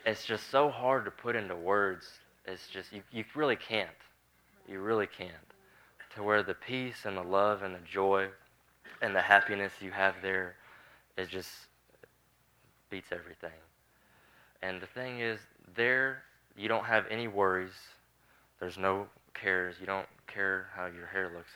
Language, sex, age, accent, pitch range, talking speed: English, male, 20-39, American, 85-100 Hz, 160 wpm